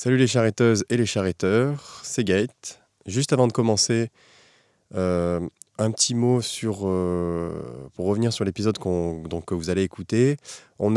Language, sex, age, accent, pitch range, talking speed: French, male, 20-39, French, 90-110 Hz, 160 wpm